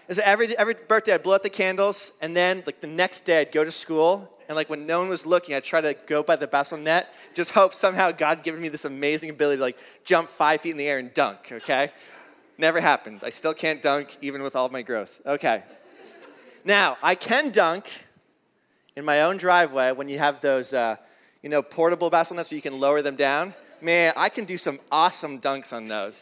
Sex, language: male, English